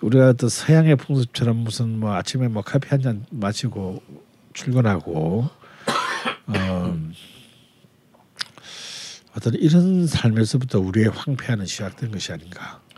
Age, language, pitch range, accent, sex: 50-69, Korean, 95-120 Hz, native, male